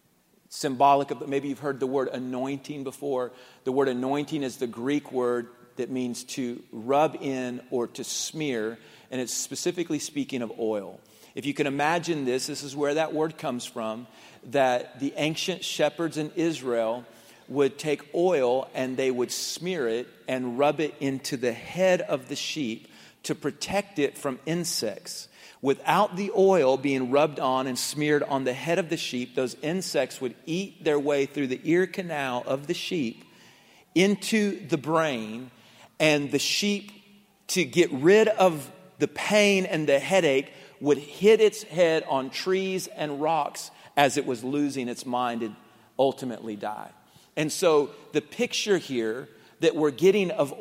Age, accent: 40-59, American